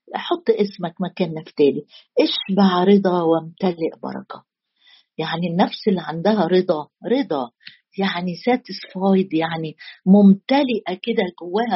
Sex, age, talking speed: female, 50-69, 100 wpm